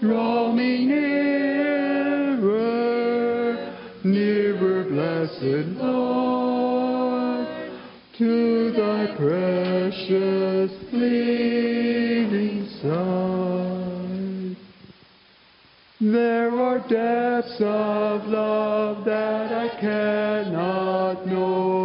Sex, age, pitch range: male, 50-69, 185-235 Hz